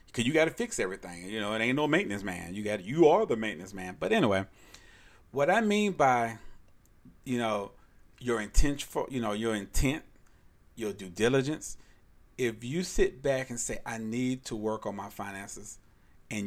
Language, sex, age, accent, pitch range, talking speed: English, male, 40-59, American, 100-135 Hz, 190 wpm